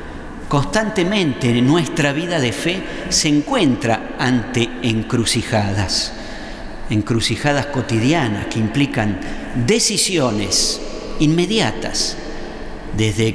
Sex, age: male, 50-69